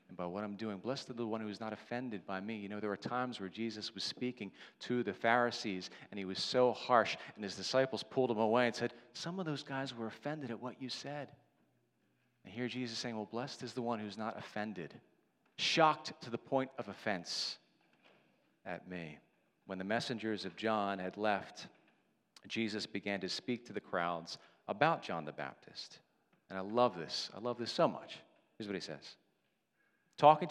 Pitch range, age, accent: 110-140 Hz, 40-59, American